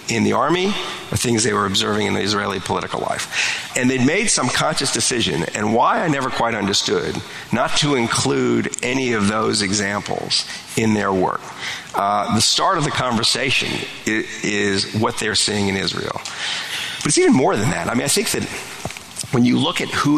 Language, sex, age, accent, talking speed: English, male, 50-69, American, 190 wpm